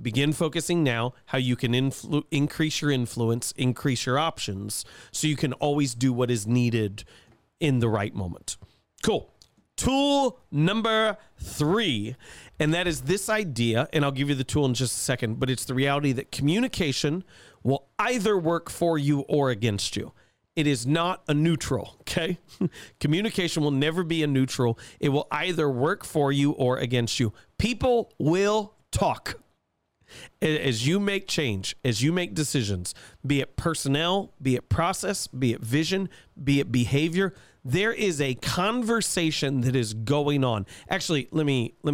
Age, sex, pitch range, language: 40-59, male, 125-165 Hz, English